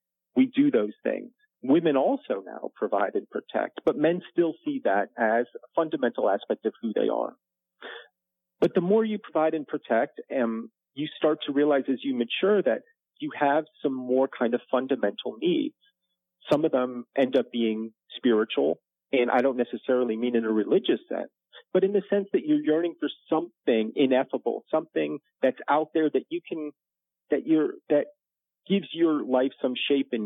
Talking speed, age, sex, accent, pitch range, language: 180 wpm, 40-59, male, American, 130-195 Hz, English